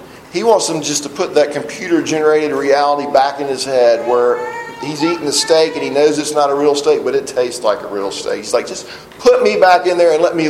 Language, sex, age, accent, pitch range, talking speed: English, male, 40-59, American, 145-215 Hz, 250 wpm